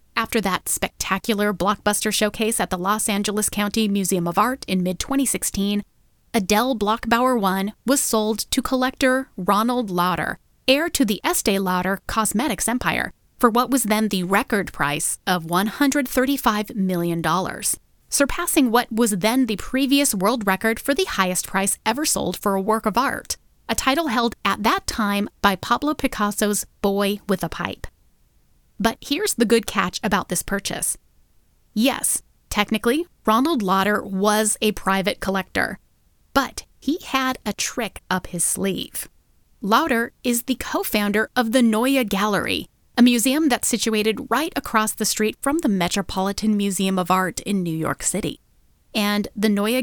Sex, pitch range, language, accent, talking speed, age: female, 195-245 Hz, English, American, 150 wpm, 30-49